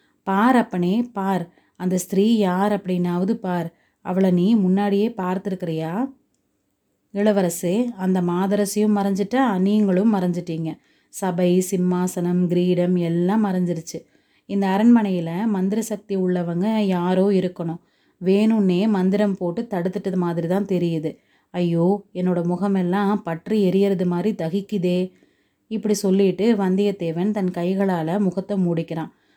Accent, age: native, 30-49